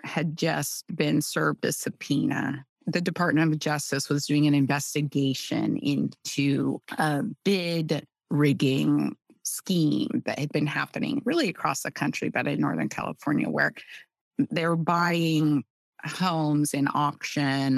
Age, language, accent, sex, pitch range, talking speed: 30-49, English, American, female, 145-175 Hz, 125 wpm